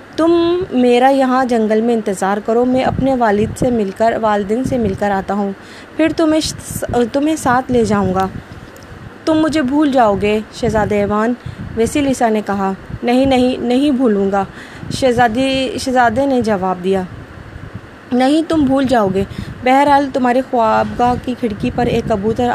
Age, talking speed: 20-39, 160 wpm